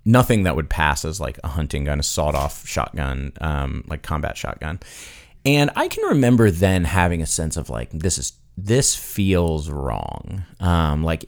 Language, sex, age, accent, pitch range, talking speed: English, male, 30-49, American, 80-105 Hz, 175 wpm